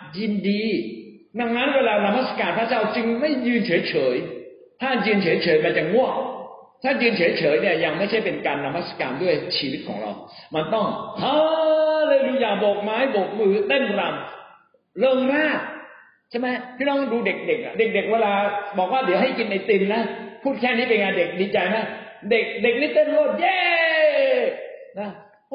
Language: Thai